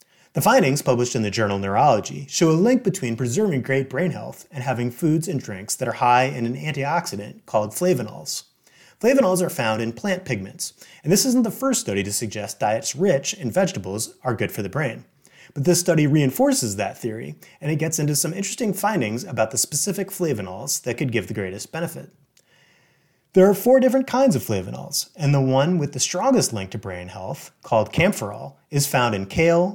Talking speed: 195 wpm